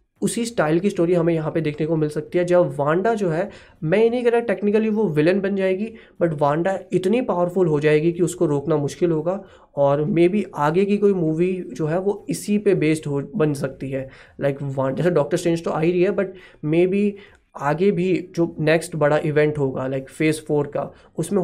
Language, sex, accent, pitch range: Hindi, male, native, 145-180 Hz